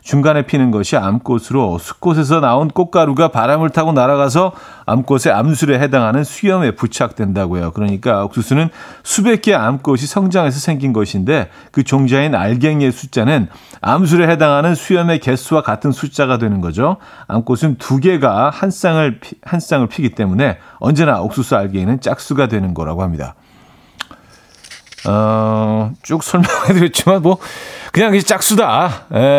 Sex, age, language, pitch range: male, 40-59, Korean, 115-155 Hz